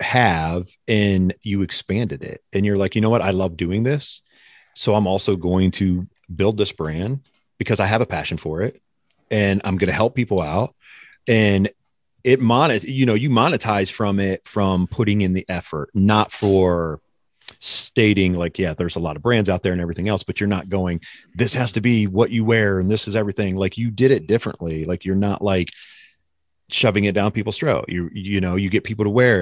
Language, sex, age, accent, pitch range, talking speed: English, male, 30-49, American, 90-110 Hz, 210 wpm